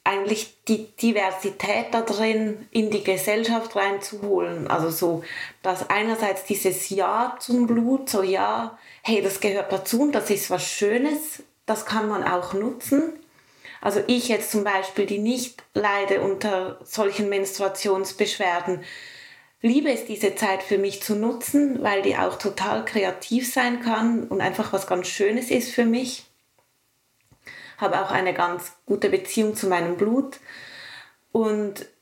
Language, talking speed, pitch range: German, 145 wpm, 195-235 Hz